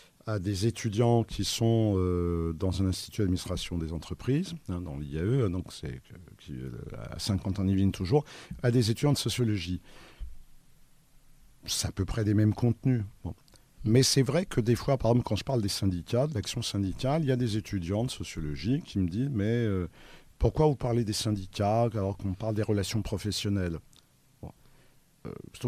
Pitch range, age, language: 95-130 Hz, 50-69, French